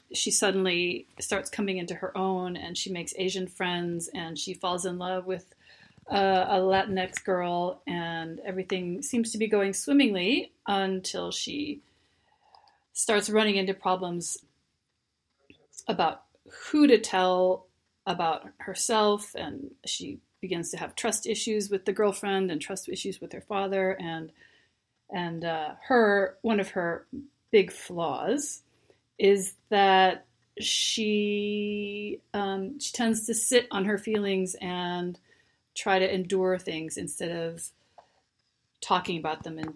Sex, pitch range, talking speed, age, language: female, 175-210 Hz, 135 wpm, 40-59, English